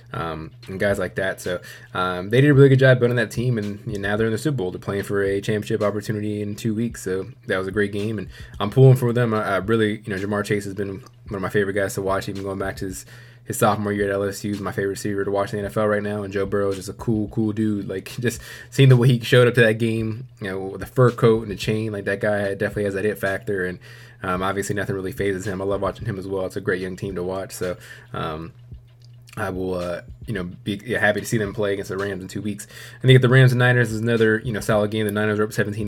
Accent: American